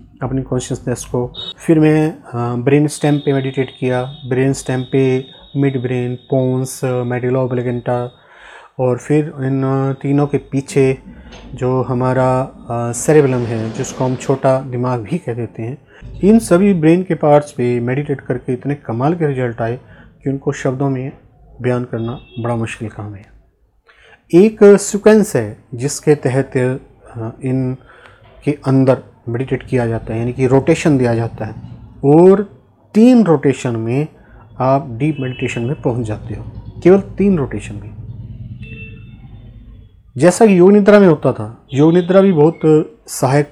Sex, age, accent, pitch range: male, 30-49, native, 120-145 Hz